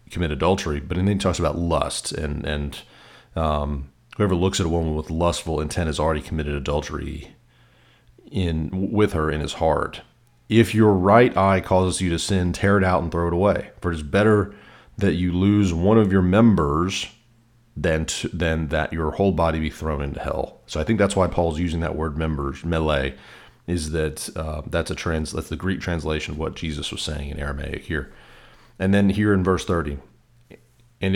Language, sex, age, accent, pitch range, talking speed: English, male, 40-59, American, 75-95 Hz, 195 wpm